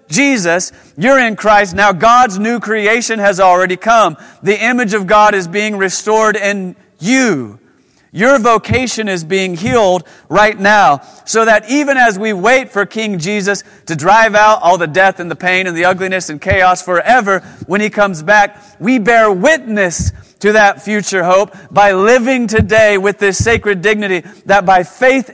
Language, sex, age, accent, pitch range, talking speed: English, male, 40-59, American, 185-220 Hz, 170 wpm